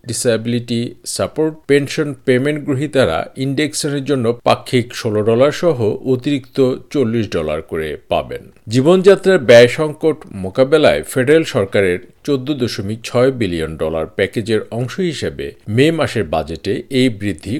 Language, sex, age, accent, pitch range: Bengali, male, 50-69, native, 115-145 Hz